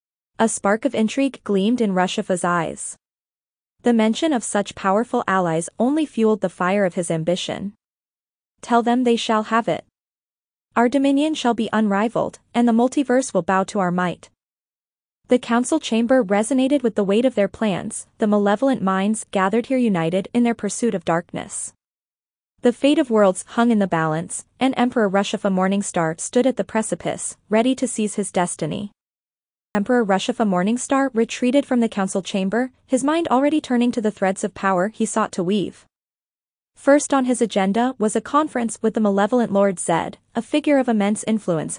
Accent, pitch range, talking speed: American, 200-245 Hz, 170 wpm